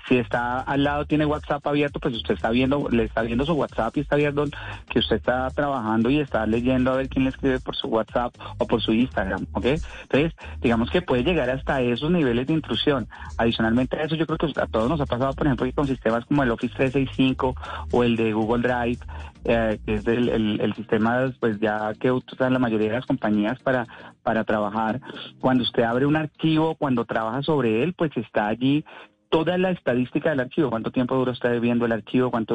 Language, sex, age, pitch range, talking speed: Spanish, male, 30-49, 115-140 Hz, 220 wpm